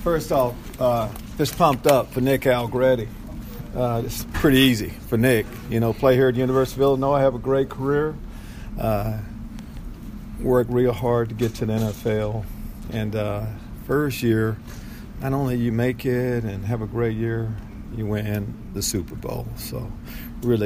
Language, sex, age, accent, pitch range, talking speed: English, male, 50-69, American, 110-120 Hz, 170 wpm